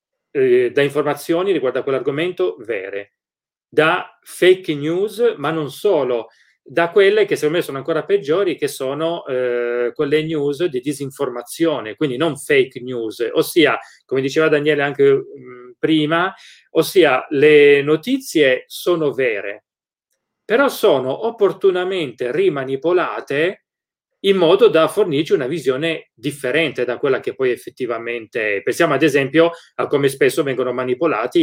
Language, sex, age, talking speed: Italian, male, 30-49, 125 wpm